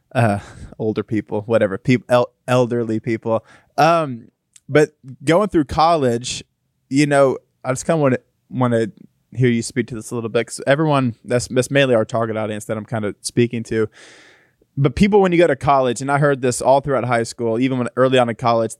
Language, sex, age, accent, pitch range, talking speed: English, male, 20-39, American, 115-140 Hz, 210 wpm